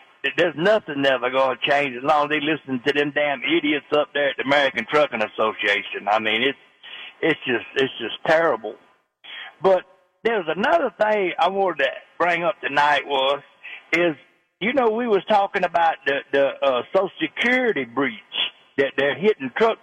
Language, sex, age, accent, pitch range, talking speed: English, male, 60-79, American, 140-185 Hz, 175 wpm